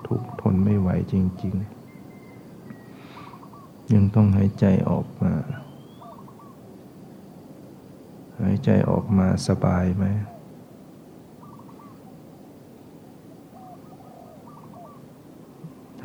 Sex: male